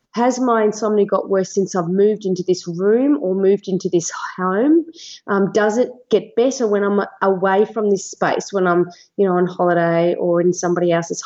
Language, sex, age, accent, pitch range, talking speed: English, female, 30-49, Australian, 185-220 Hz, 195 wpm